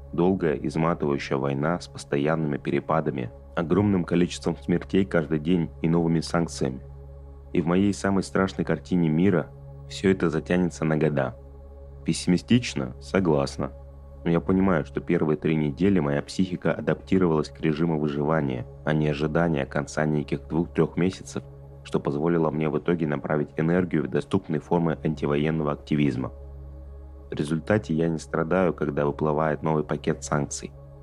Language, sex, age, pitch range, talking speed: Russian, male, 30-49, 70-85 Hz, 135 wpm